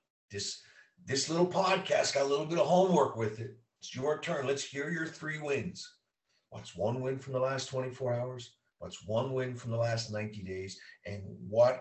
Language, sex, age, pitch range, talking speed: English, male, 50-69, 95-130 Hz, 195 wpm